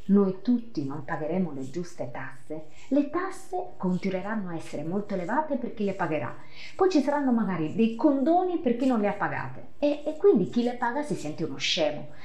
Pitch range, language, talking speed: 155-235 Hz, Italian, 195 wpm